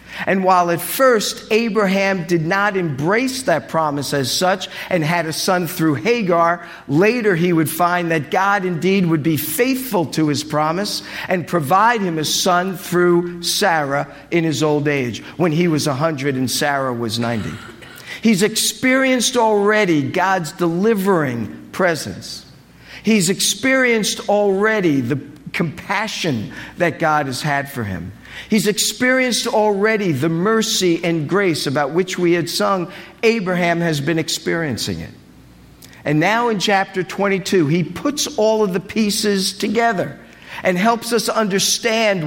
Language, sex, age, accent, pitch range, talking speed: English, male, 50-69, American, 160-205 Hz, 140 wpm